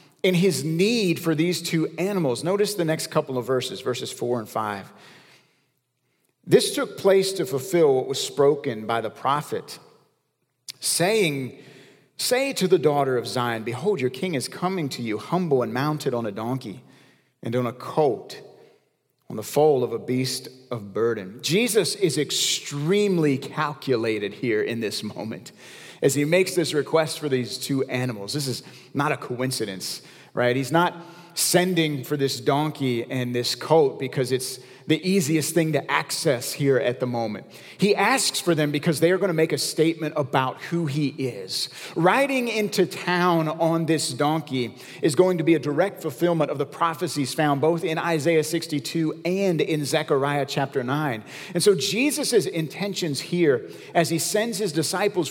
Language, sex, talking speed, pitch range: English, male, 170 wpm, 135-180 Hz